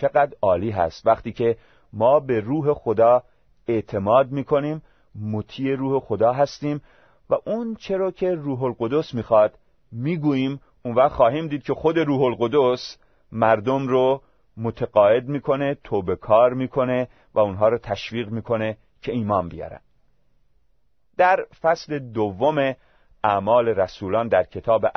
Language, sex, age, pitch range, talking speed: Persian, male, 40-59, 110-150 Hz, 125 wpm